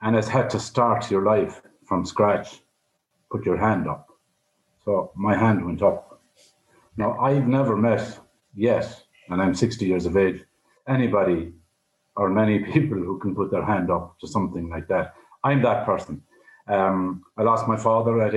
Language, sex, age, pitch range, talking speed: English, male, 50-69, 95-120 Hz, 170 wpm